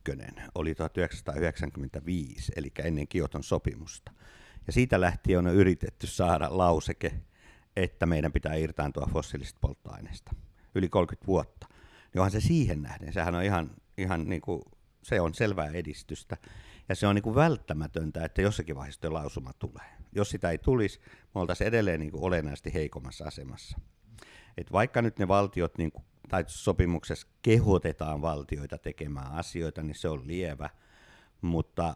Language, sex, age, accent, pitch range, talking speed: Finnish, male, 50-69, native, 80-100 Hz, 145 wpm